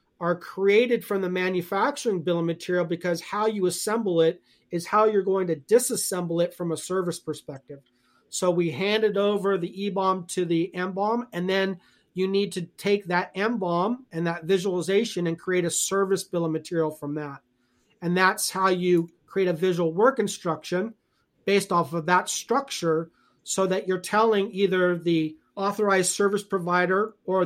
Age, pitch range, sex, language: 40-59, 170-200 Hz, male, English